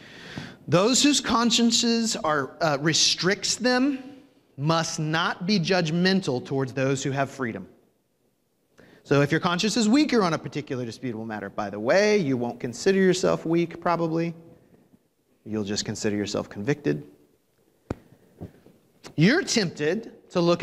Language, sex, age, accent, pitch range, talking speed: English, male, 30-49, American, 125-195 Hz, 130 wpm